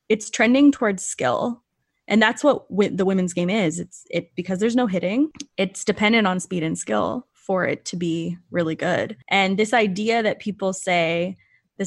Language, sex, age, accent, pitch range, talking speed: English, female, 20-39, American, 175-220 Hz, 185 wpm